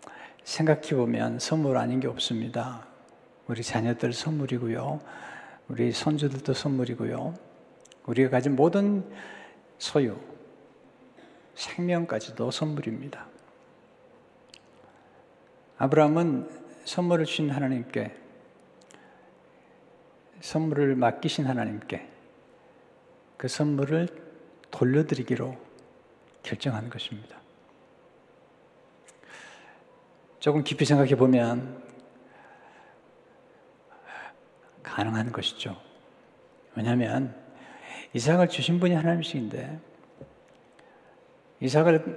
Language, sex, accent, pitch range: Korean, male, native, 120-160 Hz